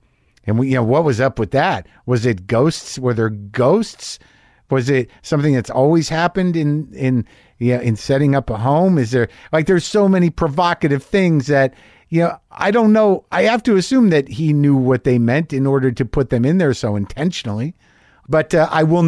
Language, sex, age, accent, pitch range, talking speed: English, male, 50-69, American, 110-145 Hz, 215 wpm